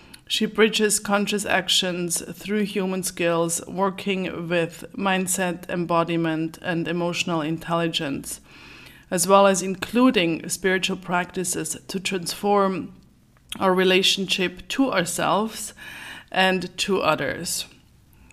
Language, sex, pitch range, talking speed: English, female, 170-205 Hz, 95 wpm